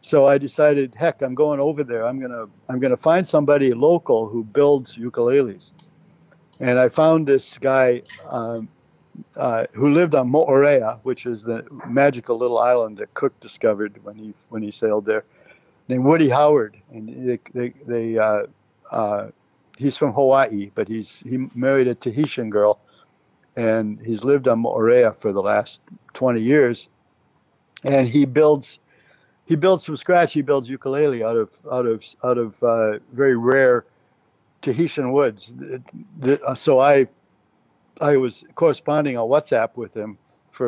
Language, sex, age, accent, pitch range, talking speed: English, male, 60-79, American, 115-150 Hz, 160 wpm